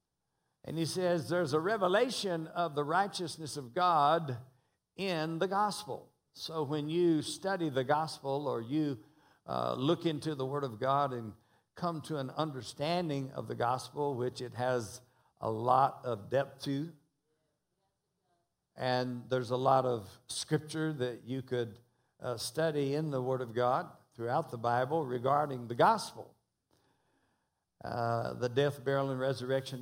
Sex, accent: male, American